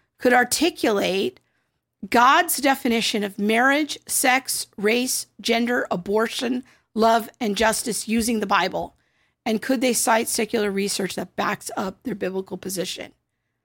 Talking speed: 125 wpm